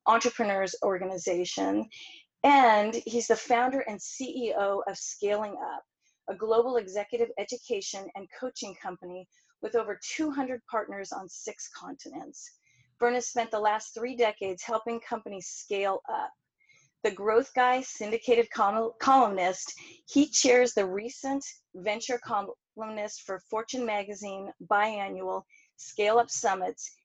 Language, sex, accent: English, female, American